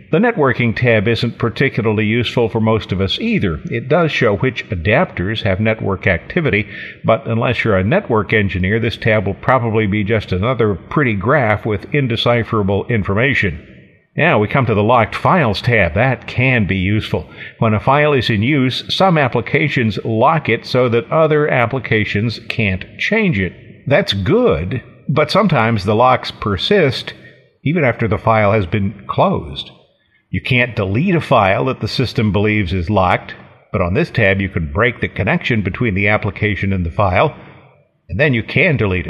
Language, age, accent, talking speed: English, 50-69, American, 170 wpm